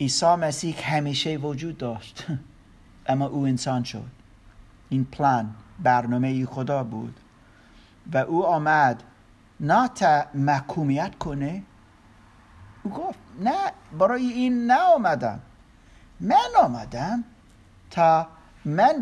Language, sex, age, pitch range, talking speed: Persian, male, 50-69, 130-215 Hz, 100 wpm